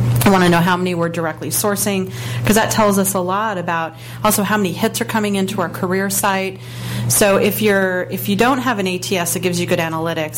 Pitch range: 165-195 Hz